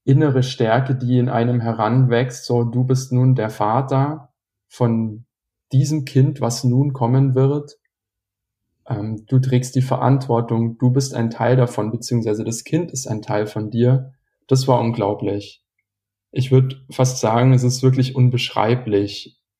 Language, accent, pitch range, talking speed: German, German, 110-130 Hz, 145 wpm